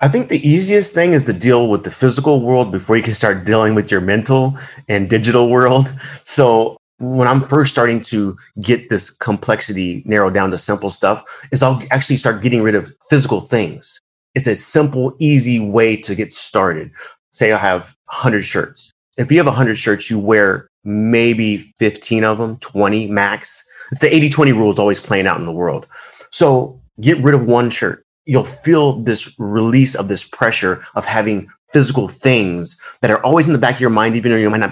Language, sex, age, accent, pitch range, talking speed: English, male, 30-49, American, 105-130 Hz, 195 wpm